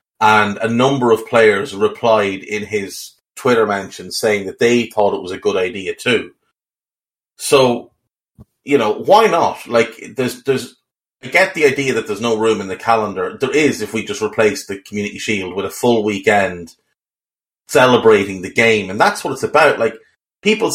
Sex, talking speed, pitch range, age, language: male, 180 wpm, 110-150 Hz, 30-49, English